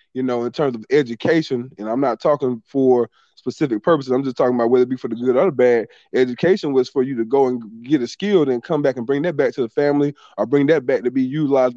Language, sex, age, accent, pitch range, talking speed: English, male, 20-39, American, 130-170 Hz, 270 wpm